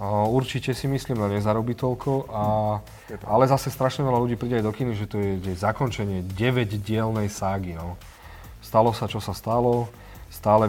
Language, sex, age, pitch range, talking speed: Slovak, male, 30-49, 105-115 Hz, 170 wpm